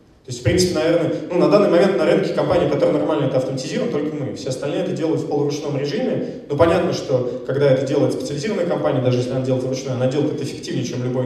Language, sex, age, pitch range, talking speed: Russian, male, 20-39, 130-155 Hz, 235 wpm